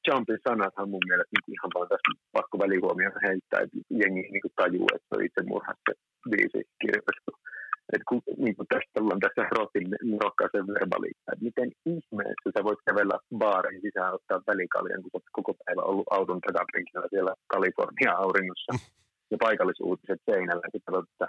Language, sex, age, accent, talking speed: Finnish, male, 30-49, native, 145 wpm